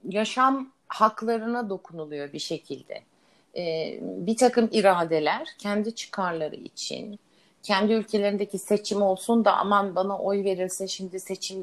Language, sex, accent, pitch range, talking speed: Turkish, female, native, 170-220 Hz, 120 wpm